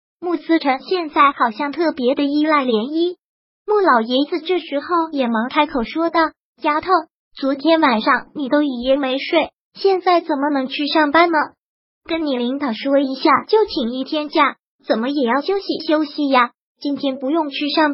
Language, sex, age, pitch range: Chinese, male, 20-39, 265-330 Hz